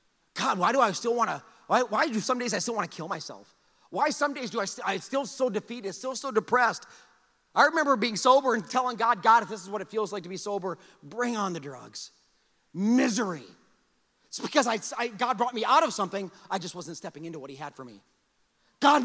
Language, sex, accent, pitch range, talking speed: English, male, American, 200-275 Hz, 235 wpm